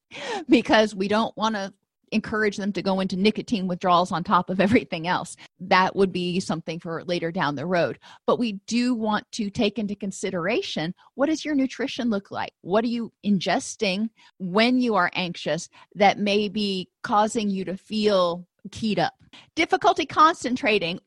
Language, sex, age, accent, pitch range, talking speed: English, female, 30-49, American, 195-245 Hz, 170 wpm